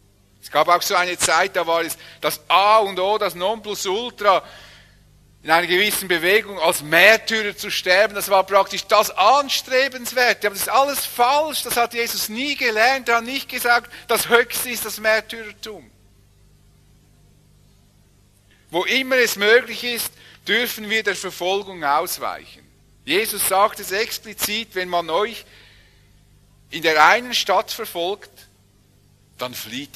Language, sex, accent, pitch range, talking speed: English, male, Austrian, 150-230 Hz, 140 wpm